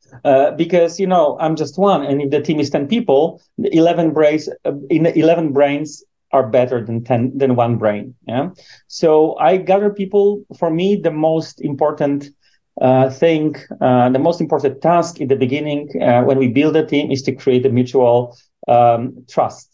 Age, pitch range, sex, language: 40-59, 135-165 Hz, male, English